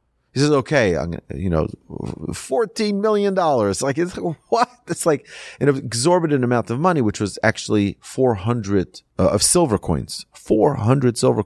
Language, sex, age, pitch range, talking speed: English, male, 40-59, 90-130 Hz, 150 wpm